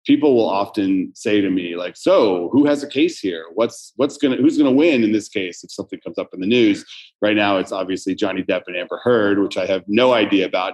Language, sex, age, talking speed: English, male, 30-49, 250 wpm